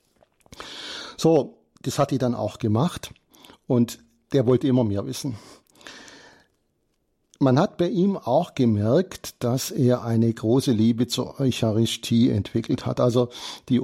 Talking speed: 130 wpm